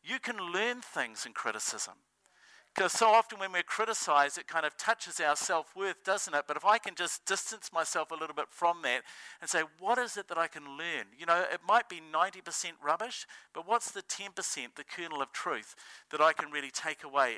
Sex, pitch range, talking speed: male, 150-195 Hz, 215 wpm